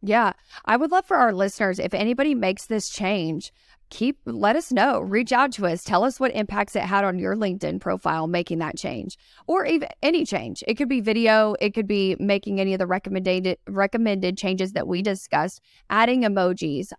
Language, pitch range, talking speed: English, 180-220 Hz, 200 wpm